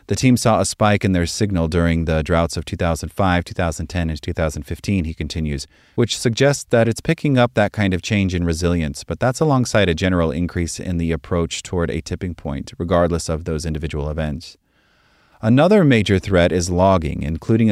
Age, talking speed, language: 30-49, 185 wpm, English